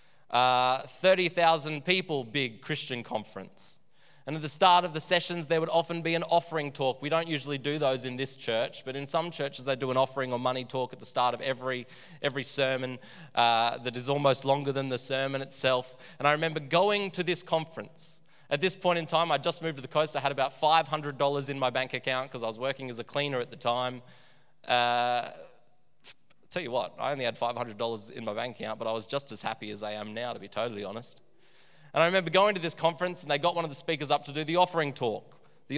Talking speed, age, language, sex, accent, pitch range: 230 wpm, 20-39, English, male, Australian, 130-160 Hz